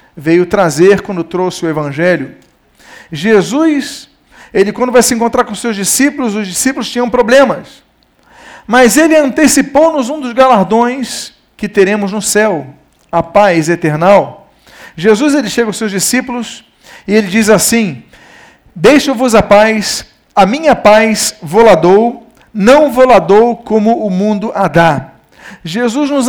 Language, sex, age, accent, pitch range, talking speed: Portuguese, male, 50-69, Brazilian, 190-245 Hz, 130 wpm